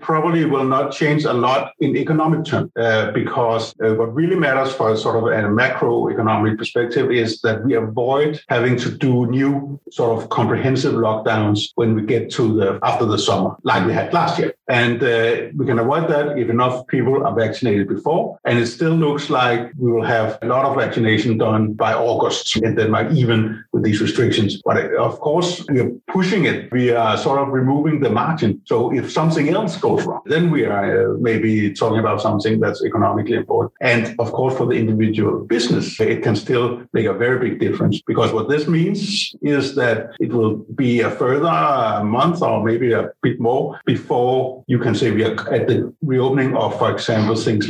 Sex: male